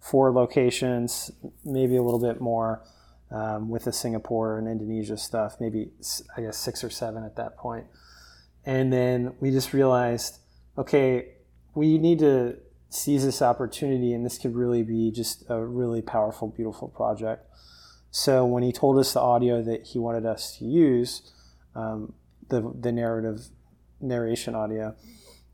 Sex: male